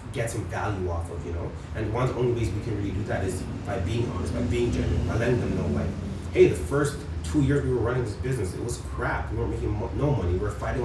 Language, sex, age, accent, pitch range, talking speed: English, male, 30-49, American, 90-125 Hz, 280 wpm